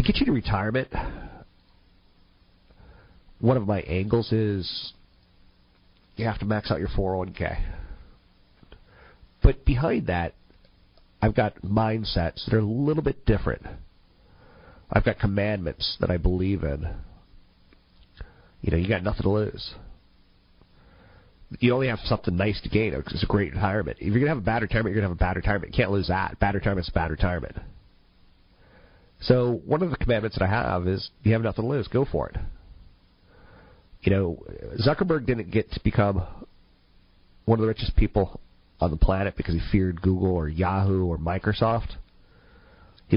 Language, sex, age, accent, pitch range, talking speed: English, male, 40-59, American, 90-110 Hz, 170 wpm